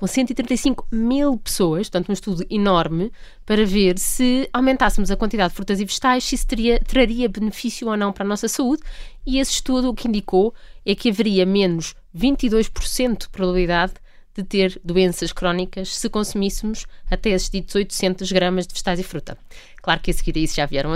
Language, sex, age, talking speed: Portuguese, female, 20-39, 180 wpm